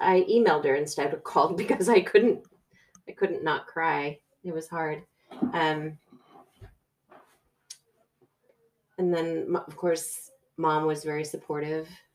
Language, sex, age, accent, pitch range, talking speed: English, female, 30-49, American, 140-180 Hz, 125 wpm